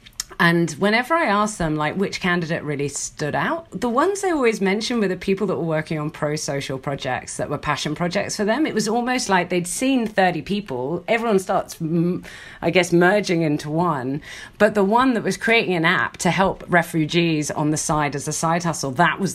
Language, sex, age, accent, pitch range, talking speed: English, female, 40-59, British, 150-200 Hz, 205 wpm